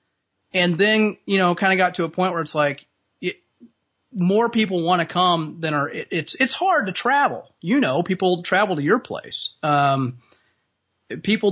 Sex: male